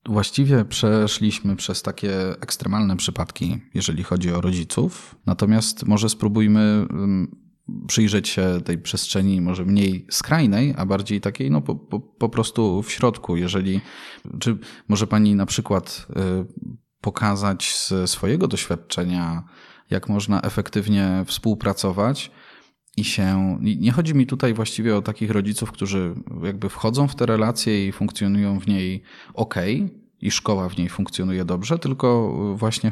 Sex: male